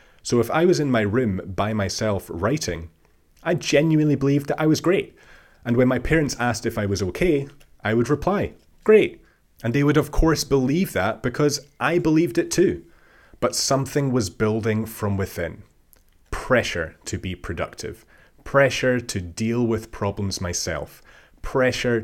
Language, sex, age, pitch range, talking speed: English, male, 30-49, 95-125 Hz, 160 wpm